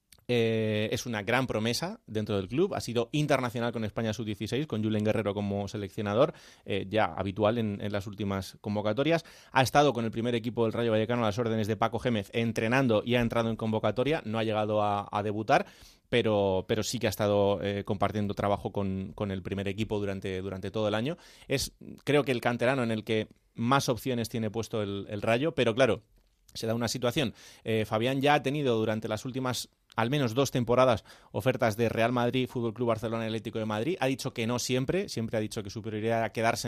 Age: 30-49